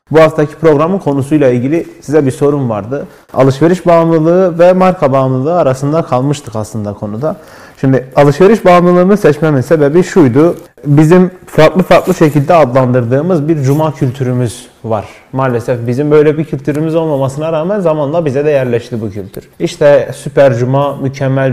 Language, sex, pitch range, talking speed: Turkish, male, 125-165 Hz, 140 wpm